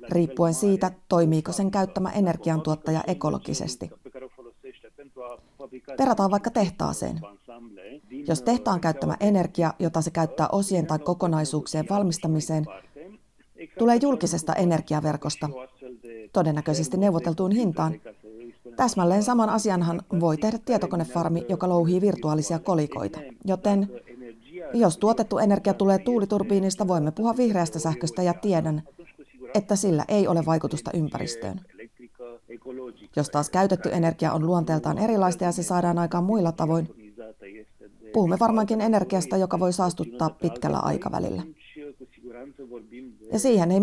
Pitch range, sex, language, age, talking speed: 150-190 Hz, female, Finnish, 30-49, 110 wpm